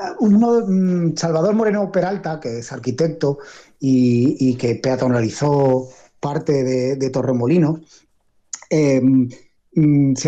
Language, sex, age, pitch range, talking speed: Spanish, male, 30-49, 140-175 Hz, 95 wpm